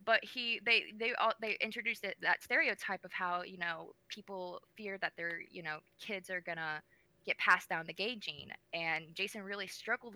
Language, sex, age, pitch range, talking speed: English, female, 20-39, 160-200 Hz, 200 wpm